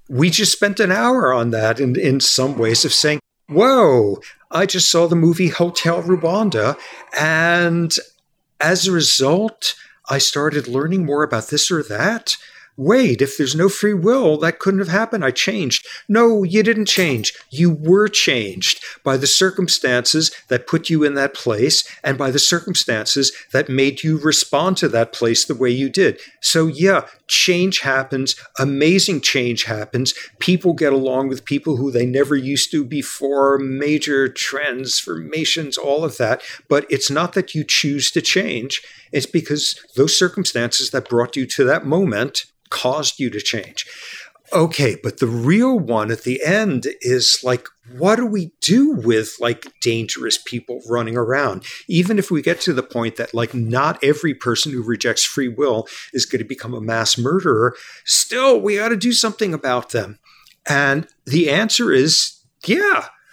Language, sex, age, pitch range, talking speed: English, male, 50-69, 130-180 Hz, 170 wpm